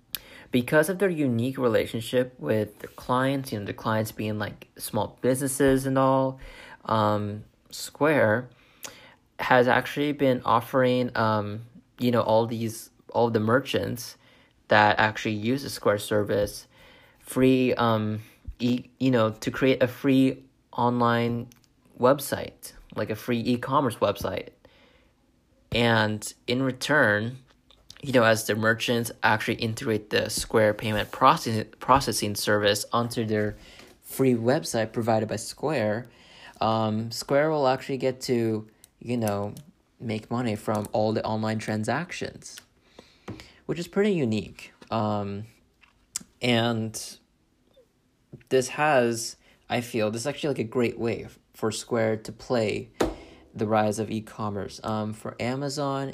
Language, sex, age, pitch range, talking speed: English, male, 30-49, 110-130 Hz, 125 wpm